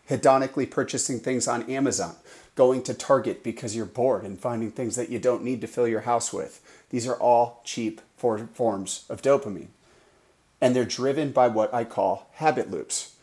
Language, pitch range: English, 110-125 Hz